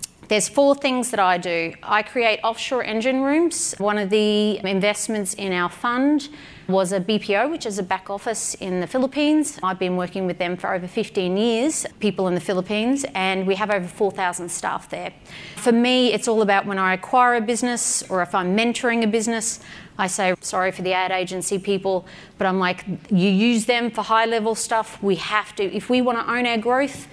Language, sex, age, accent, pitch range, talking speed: English, female, 30-49, Australian, 190-235 Hz, 205 wpm